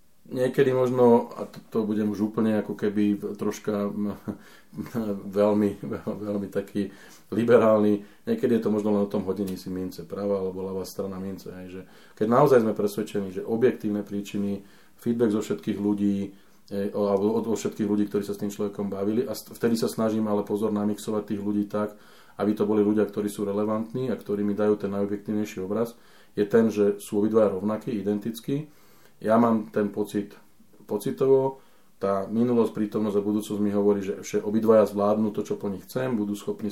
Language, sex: Slovak, male